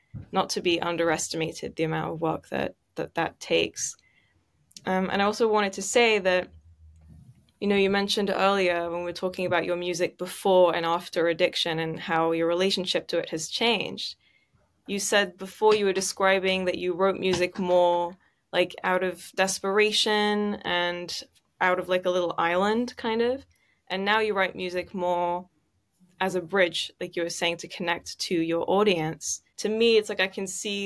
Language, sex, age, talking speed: English, female, 10-29, 180 wpm